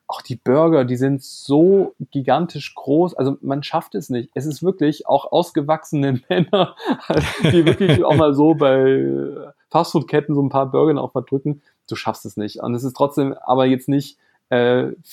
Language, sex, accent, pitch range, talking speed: German, male, German, 125-160 Hz, 175 wpm